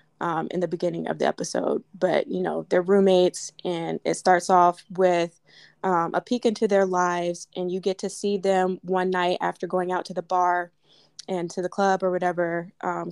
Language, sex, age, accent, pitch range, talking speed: English, female, 20-39, American, 175-195 Hz, 200 wpm